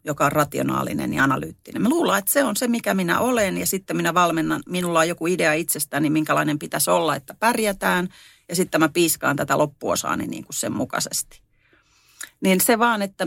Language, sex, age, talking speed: Finnish, female, 40-59, 185 wpm